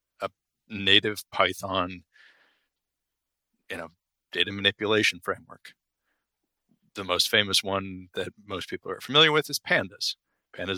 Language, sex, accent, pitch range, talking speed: English, male, American, 85-100 Hz, 120 wpm